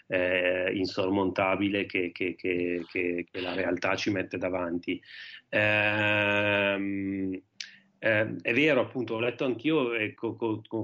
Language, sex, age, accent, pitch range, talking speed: Italian, male, 30-49, native, 100-115 Hz, 125 wpm